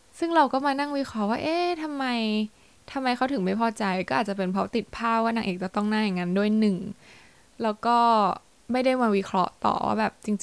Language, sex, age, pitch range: Thai, female, 10-29, 185-230 Hz